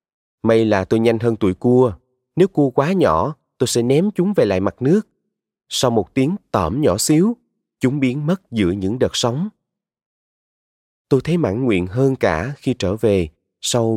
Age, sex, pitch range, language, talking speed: 20-39, male, 105-140 Hz, Vietnamese, 180 wpm